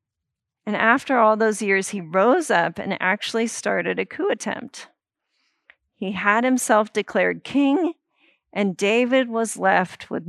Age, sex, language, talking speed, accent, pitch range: 40-59, female, English, 140 wpm, American, 190-235 Hz